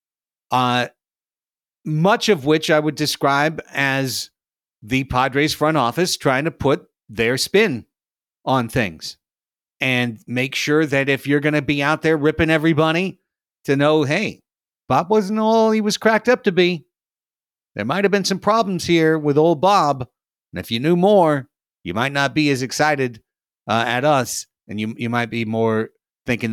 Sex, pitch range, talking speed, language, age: male, 115-160 Hz, 170 wpm, English, 50-69